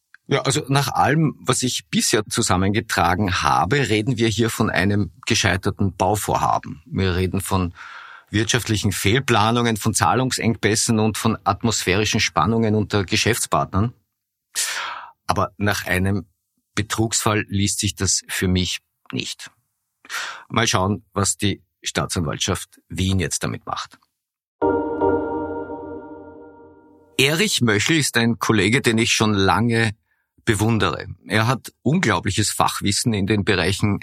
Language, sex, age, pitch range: German, male, 50-69, 95-120 Hz